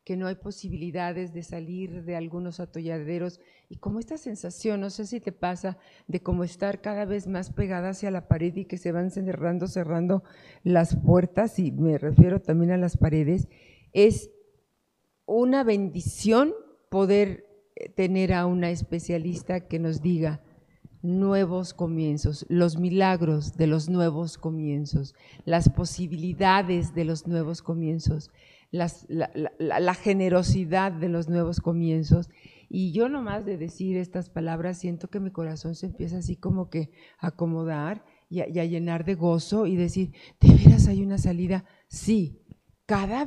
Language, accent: Spanish, Mexican